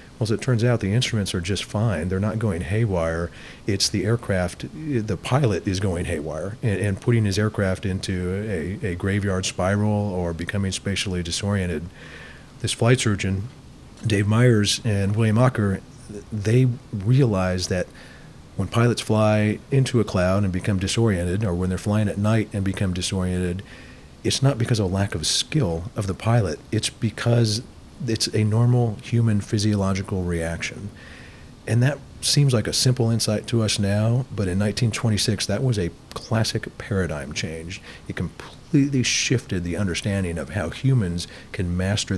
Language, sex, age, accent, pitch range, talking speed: English, male, 40-59, American, 90-115 Hz, 160 wpm